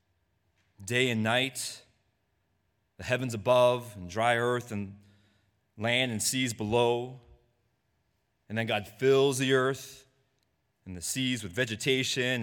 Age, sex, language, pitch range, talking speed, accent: 30-49, male, English, 105-130 Hz, 120 wpm, American